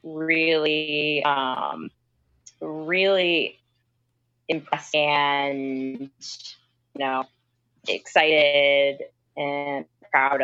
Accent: American